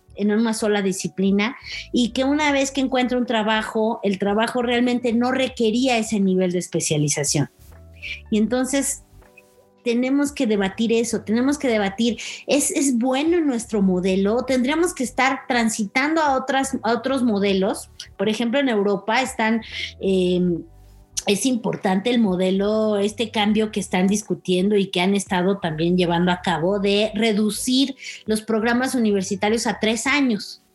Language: Spanish